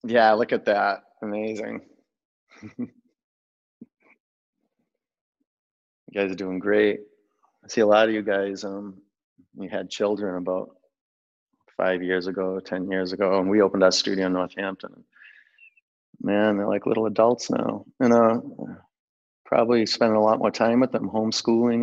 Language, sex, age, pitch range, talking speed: English, male, 30-49, 95-115 Hz, 145 wpm